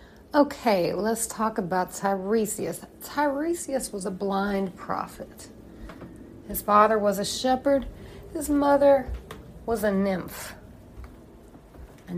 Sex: female